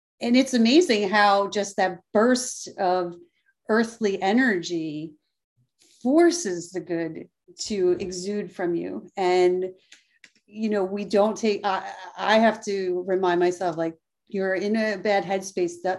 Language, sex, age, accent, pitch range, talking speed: English, female, 40-59, American, 180-215 Hz, 135 wpm